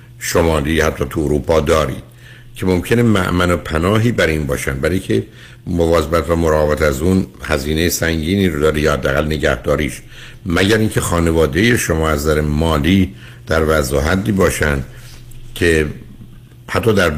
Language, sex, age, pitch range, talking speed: Persian, male, 60-79, 80-110 Hz, 135 wpm